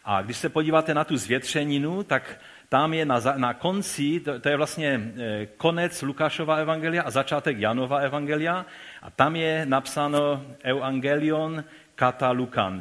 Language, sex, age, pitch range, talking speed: Czech, male, 40-59, 110-135 Hz, 150 wpm